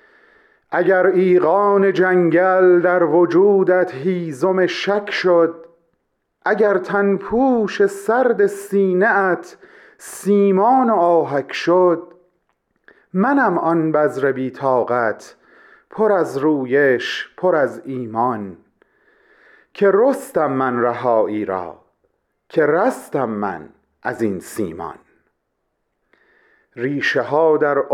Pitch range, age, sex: 155-225 Hz, 40-59, male